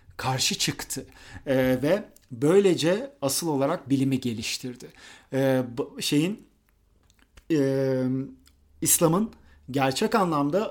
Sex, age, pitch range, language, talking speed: male, 40-59, 125-155 Hz, Turkish, 90 wpm